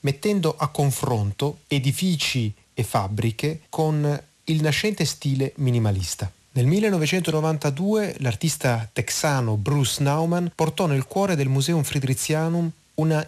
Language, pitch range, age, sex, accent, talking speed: Italian, 125-165 Hz, 30-49, male, native, 110 wpm